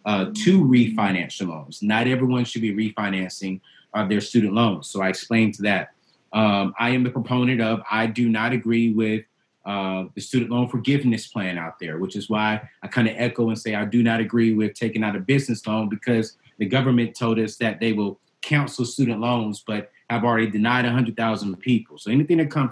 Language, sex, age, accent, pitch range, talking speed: English, male, 30-49, American, 105-125 Hz, 200 wpm